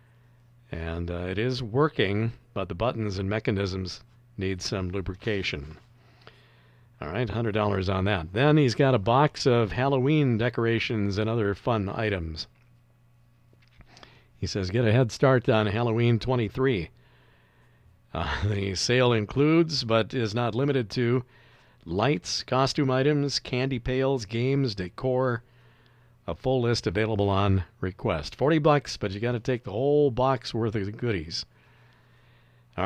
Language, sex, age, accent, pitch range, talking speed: English, male, 50-69, American, 105-130 Hz, 135 wpm